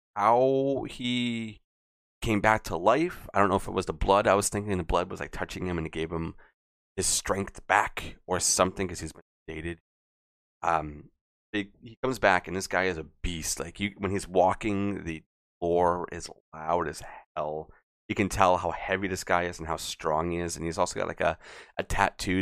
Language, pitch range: English, 80-100 Hz